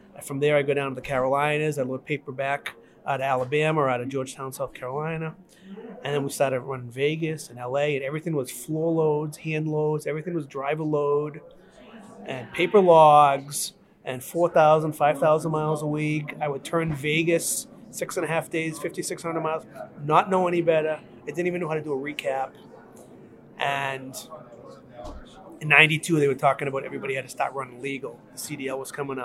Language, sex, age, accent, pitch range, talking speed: English, male, 30-49, American, 135-165 Hz, 185 wpm